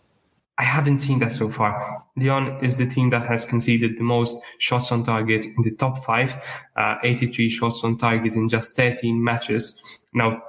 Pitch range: 115-125 Hz